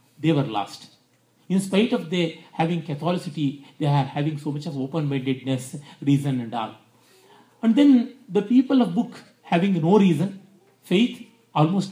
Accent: native